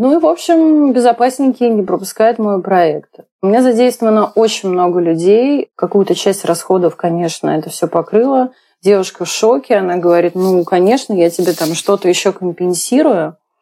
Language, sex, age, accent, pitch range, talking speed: Russian, female, 30-49, native, 175-215 Hz, 155 wpm